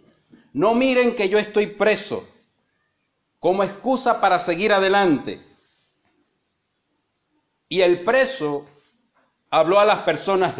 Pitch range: 175-235 Hz